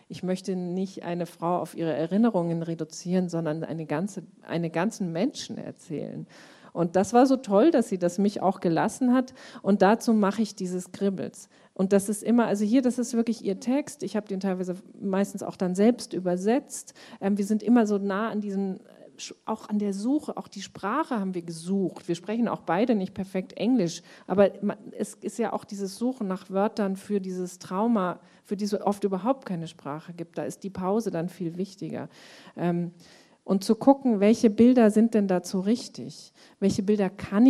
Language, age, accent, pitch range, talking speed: German, 40-59, German, 180-220 Hz, 185 wpm